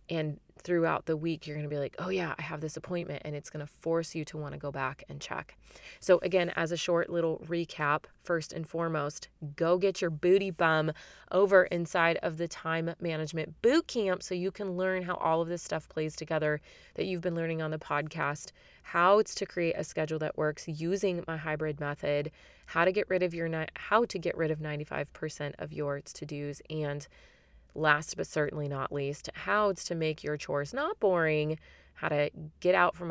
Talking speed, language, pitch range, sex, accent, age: 210 wpm, English, 150-175 Hz, female, American, 20-39